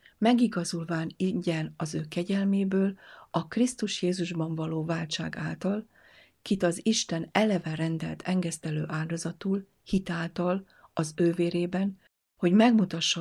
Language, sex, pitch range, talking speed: Hungarian, female, 160-195 Hz, 110 wpm